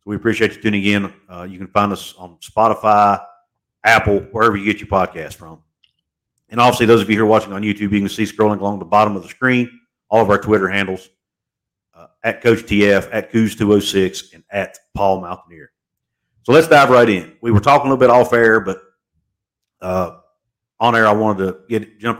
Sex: male